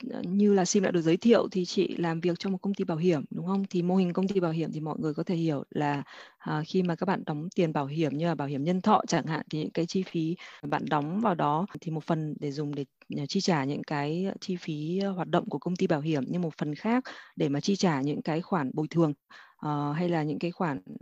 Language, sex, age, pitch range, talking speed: Vietnamese, female, 20-39, 150-190 Hz, 275 wpm